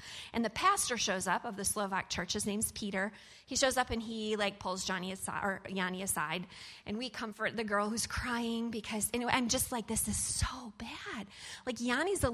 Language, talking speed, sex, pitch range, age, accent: English, 210 wpm, female, 205-275 Hz, 20-39, American